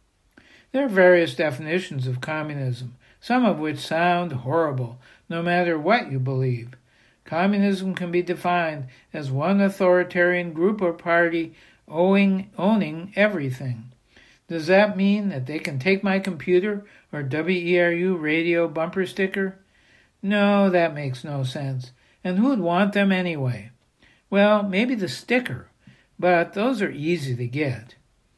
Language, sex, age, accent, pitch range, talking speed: English, male, 60-79, American, 140-190 Hz, 135 wpm